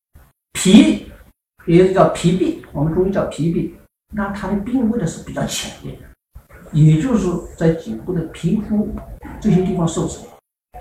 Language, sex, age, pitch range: Chinese, male, 50-69, 160-215 Hz